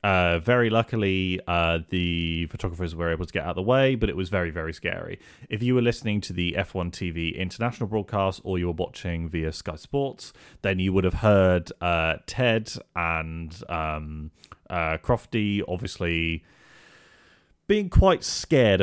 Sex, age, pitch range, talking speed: male, 30-49, 85-95 Hz, 165 wpm